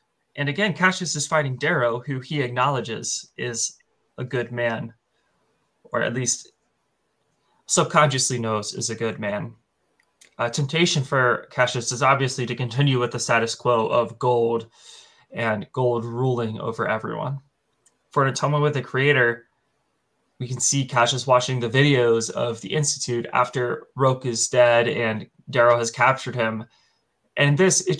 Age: 20-39